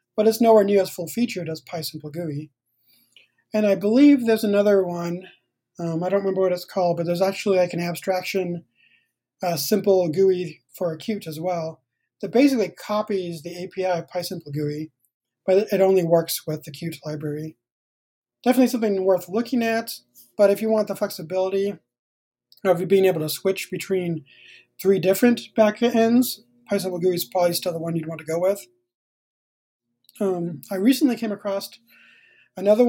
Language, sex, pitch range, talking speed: English, male, 160-205 Hz, 160 wpm